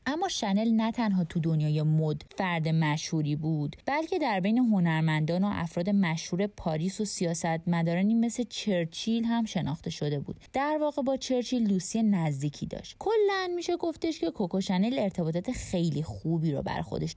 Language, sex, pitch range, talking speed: Persian, female, 160-220 Hz, 155 wpm